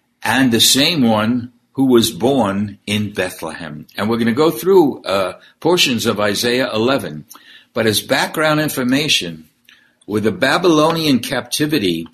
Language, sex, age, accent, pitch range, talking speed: English, male, 60-79, American, 100-135 Hz, 140 wpm